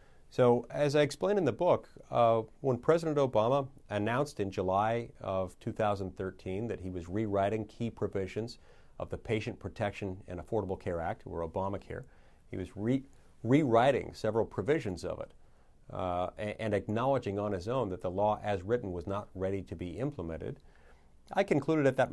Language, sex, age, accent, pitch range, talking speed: English, male, 40-59, American, 95-135 Hz, 170 wpm